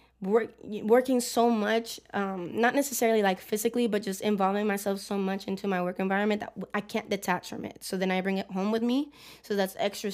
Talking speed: 205 wpm